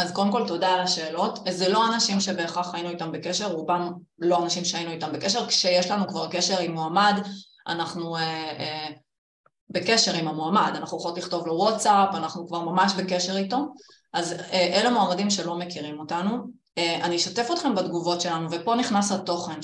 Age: 30-49